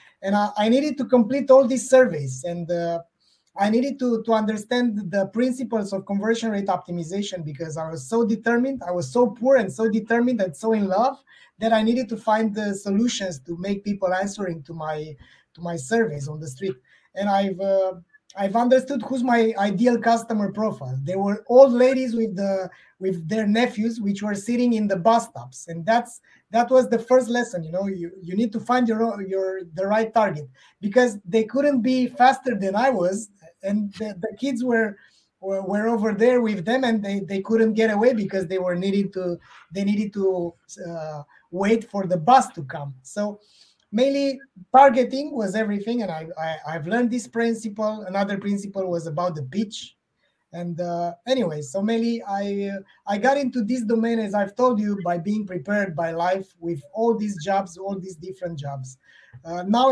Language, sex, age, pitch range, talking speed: English, male, 20-39, 185-230 Hz, 190 wpm